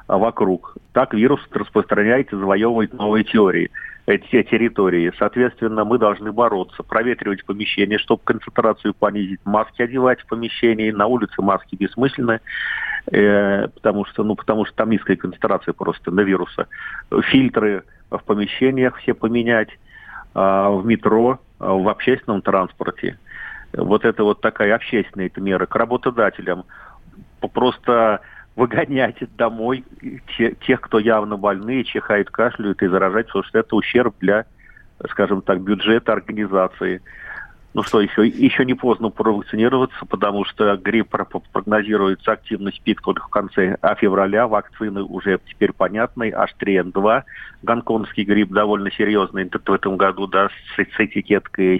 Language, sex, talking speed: Russian, male, 125 wpm